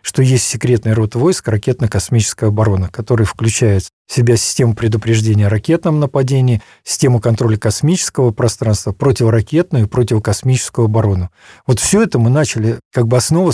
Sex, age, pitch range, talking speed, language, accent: male, 50-69, 110-135 Hz, 140 wpm, Russian, native